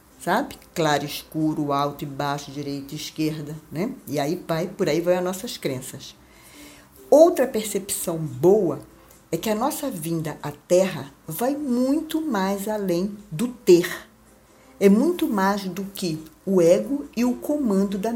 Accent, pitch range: Brazilian, 165-255 Hz